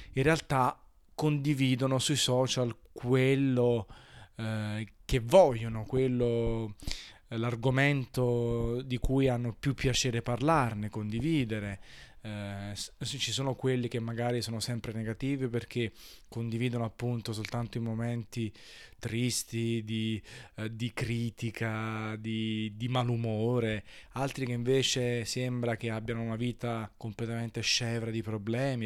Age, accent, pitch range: 20-39, native, 110-125 Hz